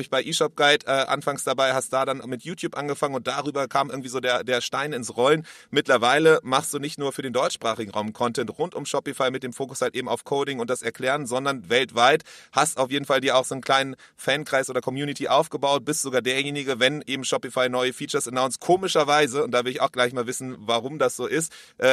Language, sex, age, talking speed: German, male, 30-49, 225 wpm